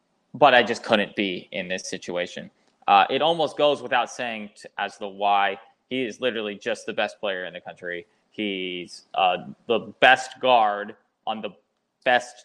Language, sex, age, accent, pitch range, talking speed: English, male, 20-39, American, 100-115 Hz, 175 wpm